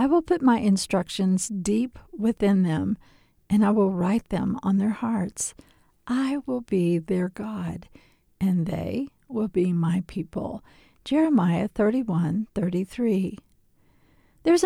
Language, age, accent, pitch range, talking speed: English, 50-69, American, 190-245 Hz, 125 wpm